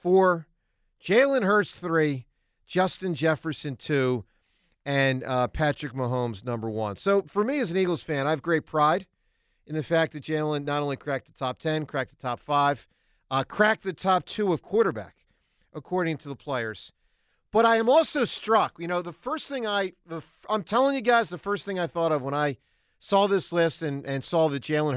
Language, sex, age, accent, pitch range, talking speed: English, male, 40-59, American, 135-195 Hz, 190 wpm